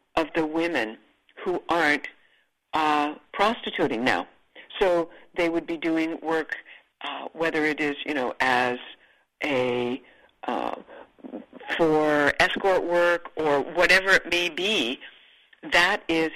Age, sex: 60-79, female